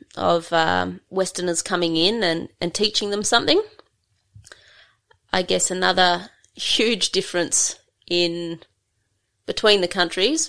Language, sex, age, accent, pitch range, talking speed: English, female, 20-39, Australian, 155-185 Hz, 110 wpm